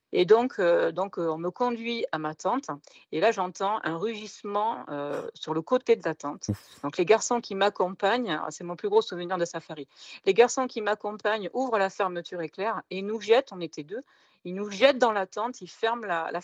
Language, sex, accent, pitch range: French, female, French, 170-230 Hz